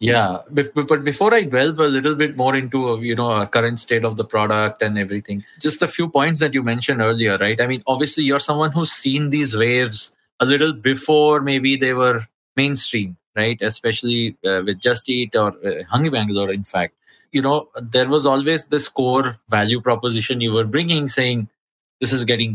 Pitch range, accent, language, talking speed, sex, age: 110-145 Hz, Indian, English, 195 wpm, male, 20-39